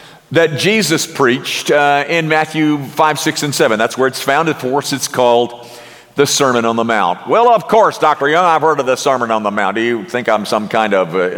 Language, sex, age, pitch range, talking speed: English, male, 50-69, 135-190 Hz, 230 wpm